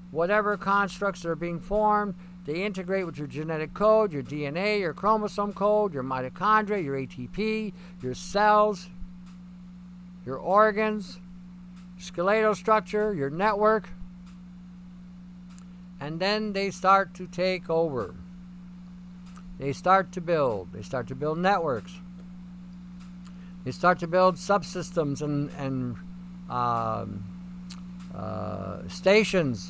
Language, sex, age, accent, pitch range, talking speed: English, male, 60-79, American, 175-195 Hz, 110 wpm